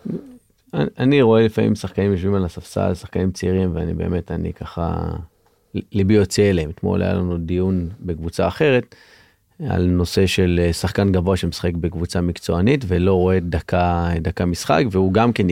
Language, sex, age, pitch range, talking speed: Hebrew, male, 30-49, 90-100 Hz, 150 wpm